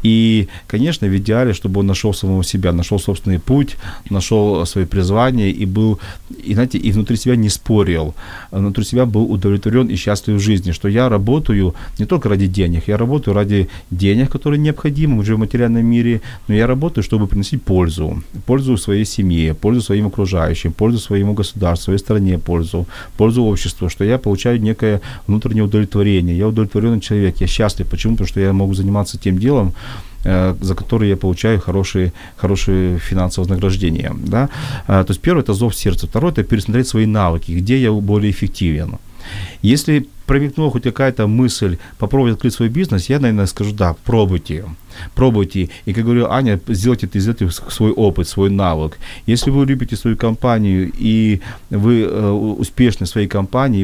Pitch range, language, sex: 95-115 Hz, Ukrainian, male